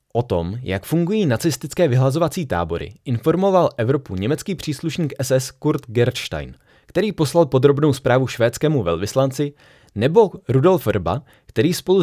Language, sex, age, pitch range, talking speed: Czech, male, 30-49, 105-150 Hz, 125 wpm